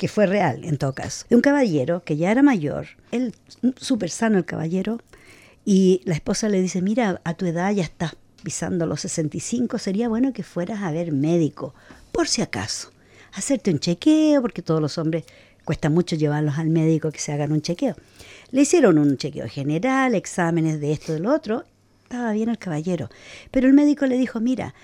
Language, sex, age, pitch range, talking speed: English, female, 50-69, 155-225 Hz, 190 wpm